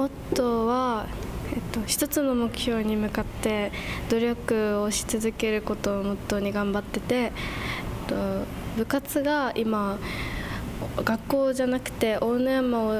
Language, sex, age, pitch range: Japanese, female, 20-39, 205-235 Hz